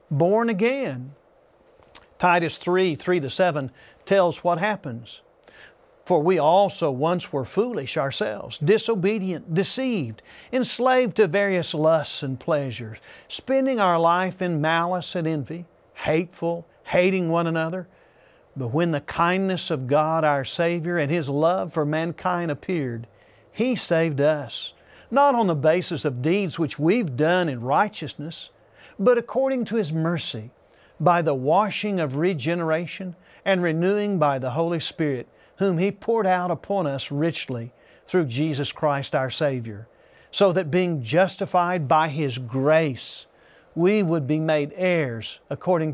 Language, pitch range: English, 150-195 Hz